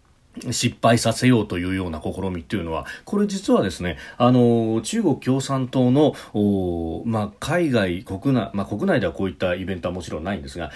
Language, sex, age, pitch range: Japanese, male, 40-59, 100-130 Hz